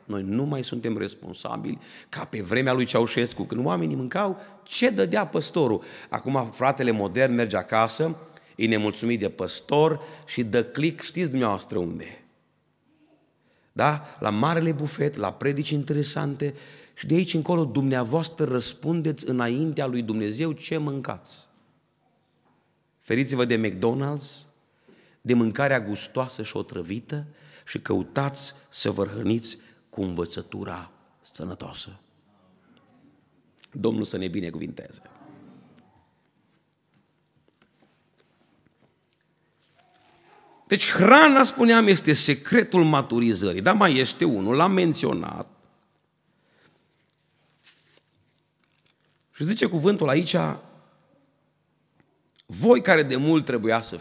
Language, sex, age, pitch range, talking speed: Romanian, male, 30-49, 115-160 Hz, 100 wpm